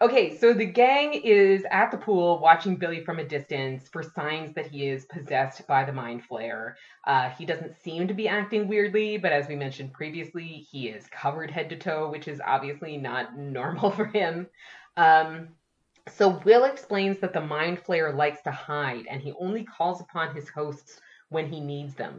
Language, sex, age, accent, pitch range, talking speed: English, female, 20-39, American, 140-185 Hz, 190 wpm